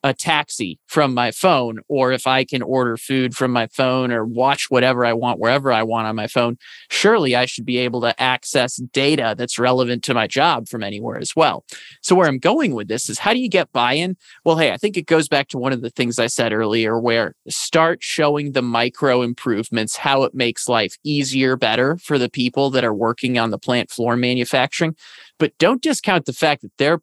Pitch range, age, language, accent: 120-145 Hz, 30-49, English, American